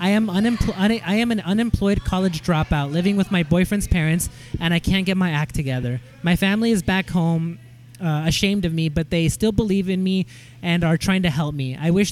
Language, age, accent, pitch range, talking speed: English, 20-39, American, 160-190 Hz, 210 wpm